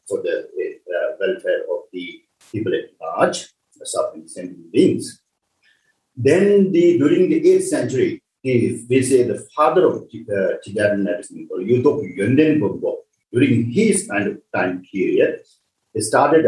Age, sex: 50-69, male